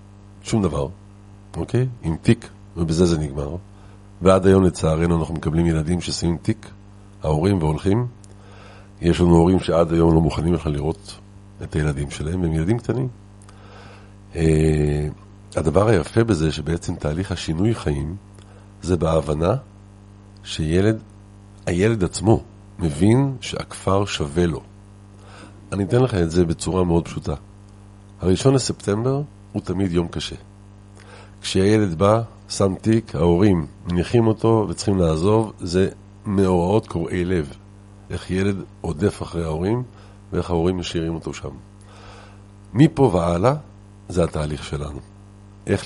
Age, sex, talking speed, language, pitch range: 50-69, male, 120 wpm, Hebrew, 85-100 Hz